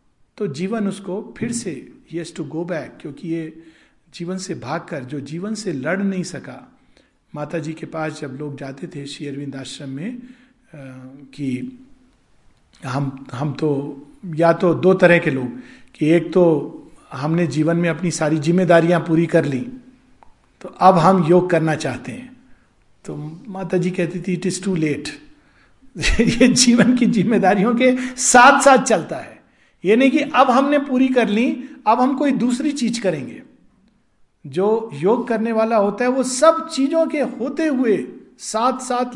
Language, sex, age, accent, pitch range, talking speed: Hindi, male, 50-69, native, 160-240 Hz, 160 wpm